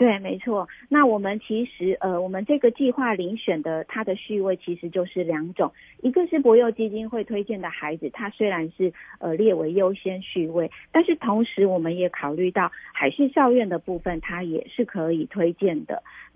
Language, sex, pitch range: Chinese, female, 170-225 Hz